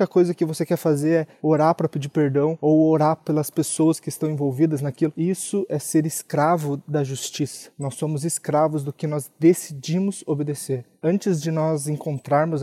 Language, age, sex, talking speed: Portuguese, 20-39, male, 170 wpm